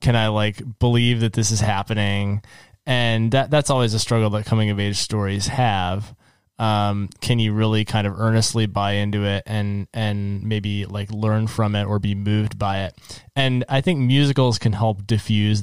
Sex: male